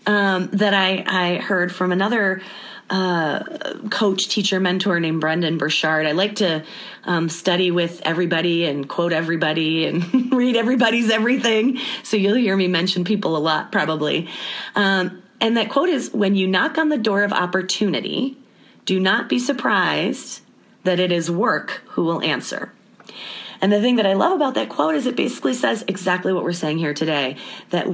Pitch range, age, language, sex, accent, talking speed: 170-215 Hz, 30-49, English, female, American, 175 wpm